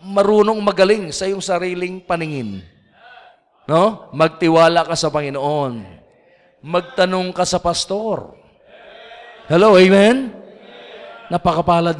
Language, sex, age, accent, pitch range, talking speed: English, male, 50-69, Filipino, 160-205 Hz, 90 wpm